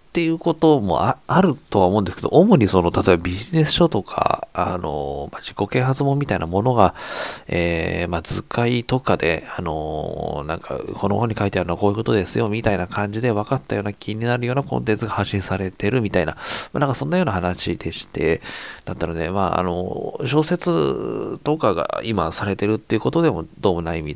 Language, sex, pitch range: Japanese, male, 85-115 Hz